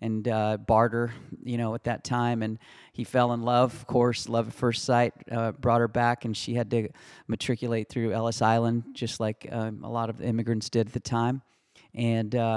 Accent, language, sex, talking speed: American, English, male, 205 wpm